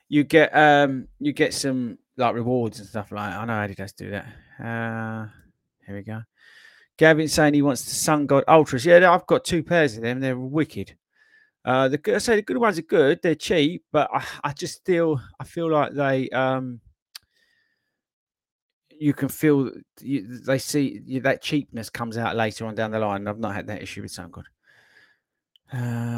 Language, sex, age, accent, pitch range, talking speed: English, male, 30-49, British, 115-160 Hz, 195 wpm